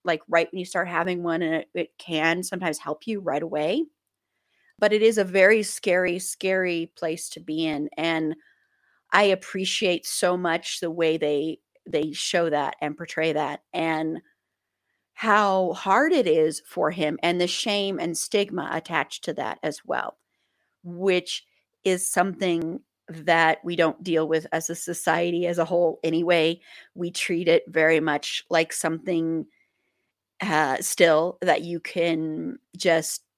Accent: American